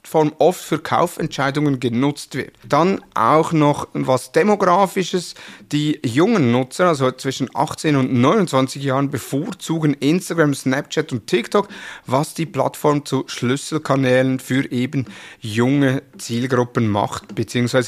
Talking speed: 115 wpm